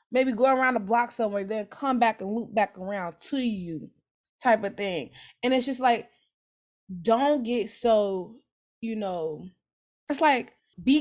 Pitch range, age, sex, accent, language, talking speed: 185-235 Hz, 20-39, female, American, English, 165 wpm